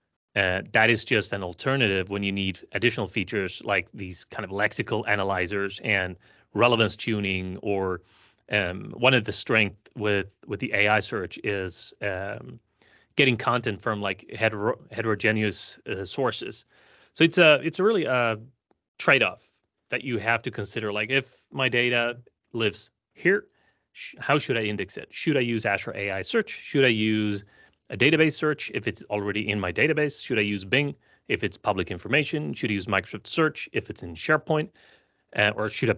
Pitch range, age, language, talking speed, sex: 100-120 Hz, 30-49, English, 175 wpm, male